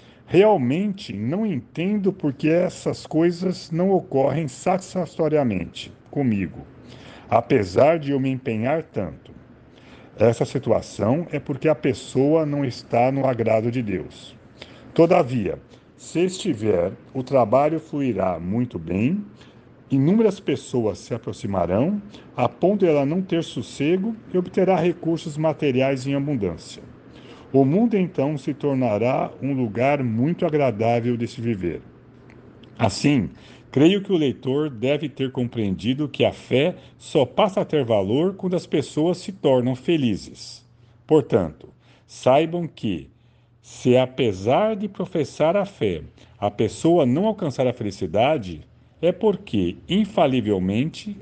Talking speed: 125 wpm